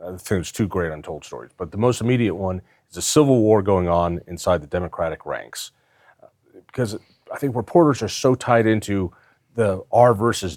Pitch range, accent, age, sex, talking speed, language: 95-120 Hz, American, 40-59, male, 185 wpm, English